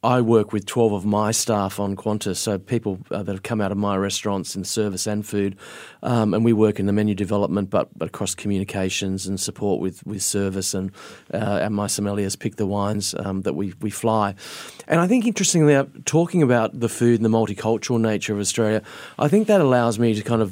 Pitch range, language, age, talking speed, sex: 105-120 Hz, English, 30-49, 220 wpm, male